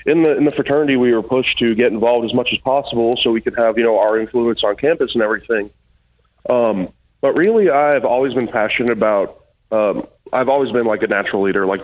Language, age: English, 30-49